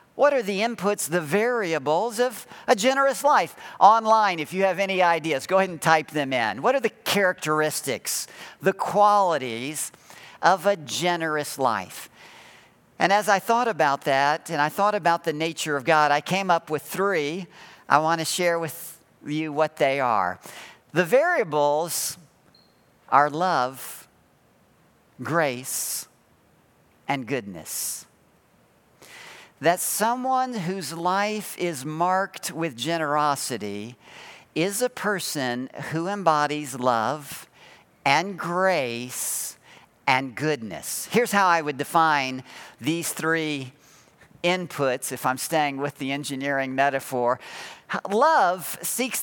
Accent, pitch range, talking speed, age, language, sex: American, 145-195 Hz, 125 wpm, 50-69, English, male